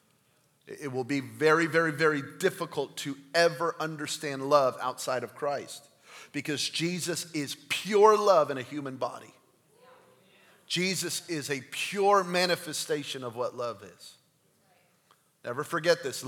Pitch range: 130-175 Hz